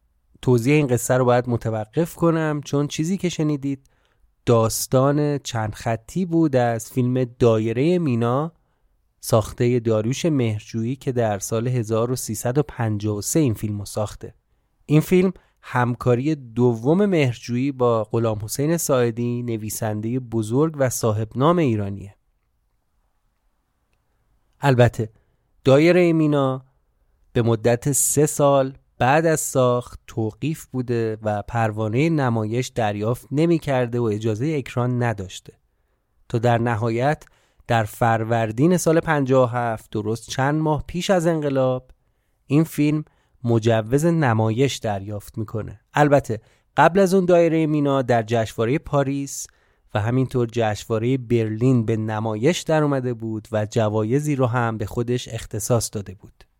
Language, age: Persian, 30-49